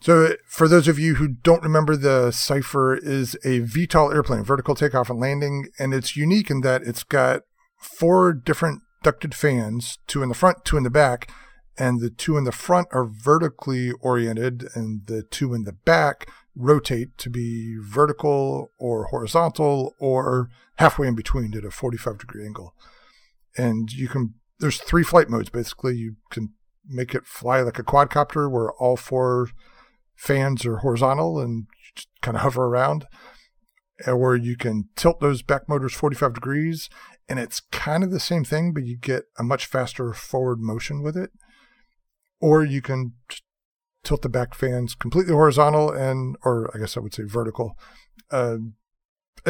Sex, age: male, 40-59